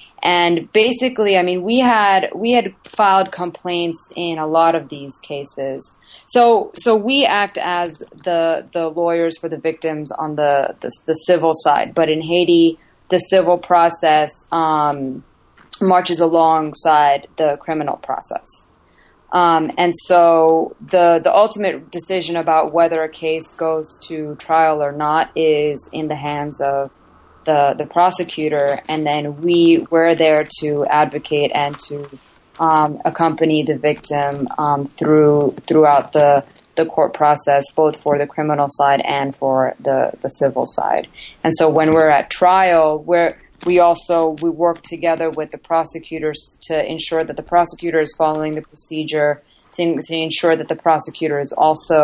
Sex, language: female, English